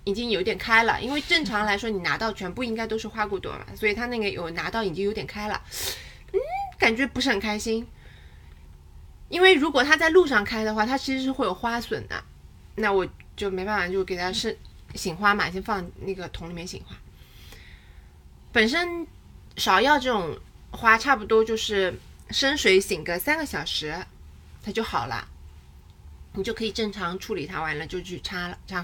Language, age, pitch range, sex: Chinese, 20-39, 175-255 Hz, female